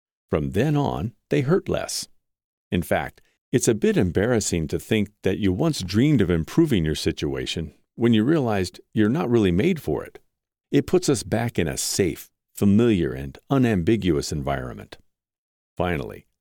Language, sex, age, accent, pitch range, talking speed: French, male, 50-69, American, 85-120 Hz, 155 wpm